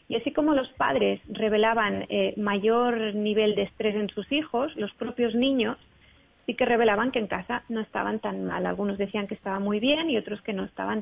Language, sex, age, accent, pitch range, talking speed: Spanish, female, 30-49, Spanish, 205-230 Hz, 205 wpm